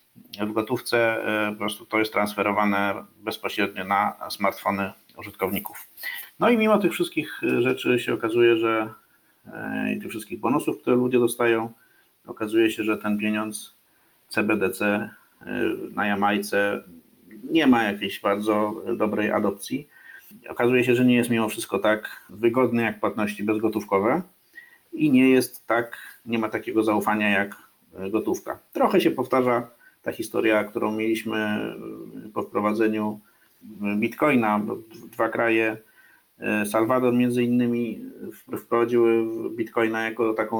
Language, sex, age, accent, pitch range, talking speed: Polish, male, 50-69, native, 105-120 Hz, 120 wpm